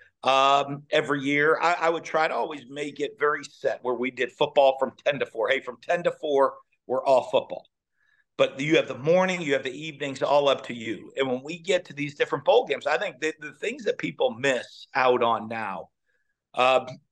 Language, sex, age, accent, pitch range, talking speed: English, male, 50-69, American, 135-165 Hz, 220 wpm